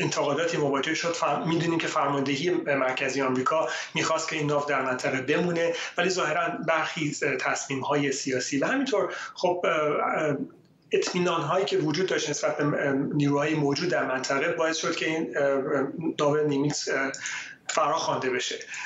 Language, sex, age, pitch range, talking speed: Persian, male, 30-49, 135-160 Hz, 130 wpm